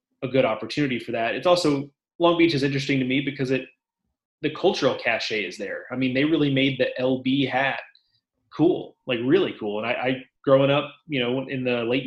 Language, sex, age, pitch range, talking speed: English, male, 20-39, 120-140 Hz, 210 wpm